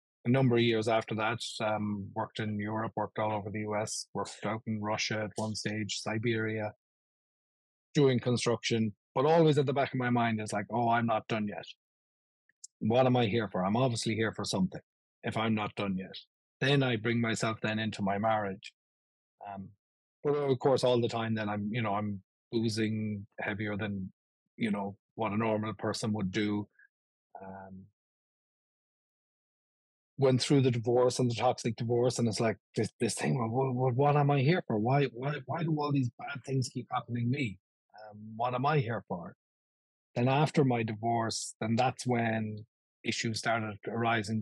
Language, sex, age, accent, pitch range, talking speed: English, male, 30-49, Irish, 105-125 Hz, 185 wpm